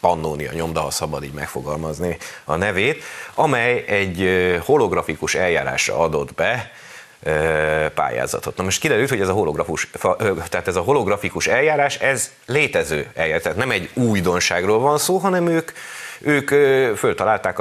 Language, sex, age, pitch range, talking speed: Hungarian, male, 30-49, 85-135 Hz, 135 wpm